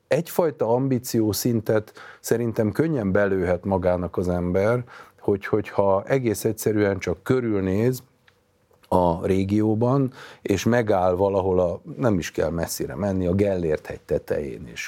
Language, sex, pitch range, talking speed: Hungarian, male, 95-115 Hz, 125 wpm